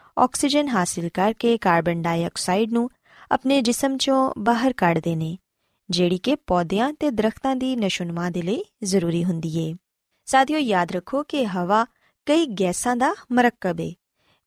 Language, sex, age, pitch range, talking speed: Punjabi, female, 20-39, 180-270 Hz, 140 wpm